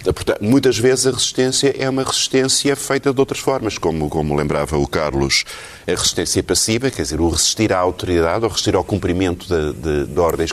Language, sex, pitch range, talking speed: Portuguese, male, 85-130 Hz, 195 wpm